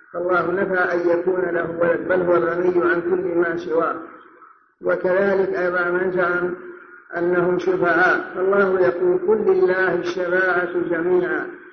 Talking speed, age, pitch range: 125 wpm, 50-69, 175-195 Hz